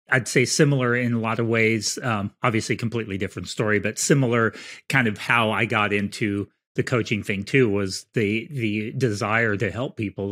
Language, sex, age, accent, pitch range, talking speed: English, male, 30-49, American, 100-120 Hz, 185 wpm